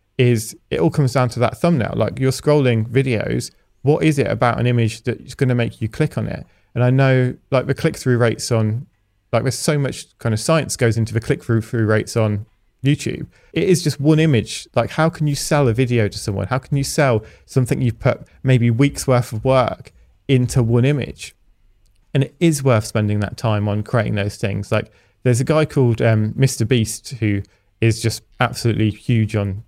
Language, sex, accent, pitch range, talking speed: English, male, British, 110-135 Hz, 210 wpm